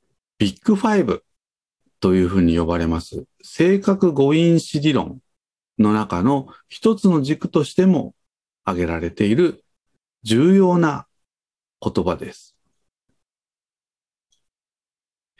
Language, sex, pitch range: Japanese, male, 100-160 Hz